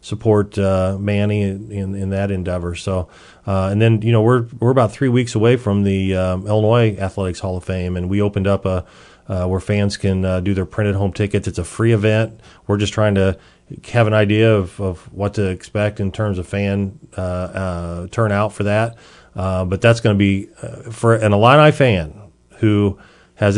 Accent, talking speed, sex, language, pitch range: American, 205 wpm, male, English, 95-110 Hz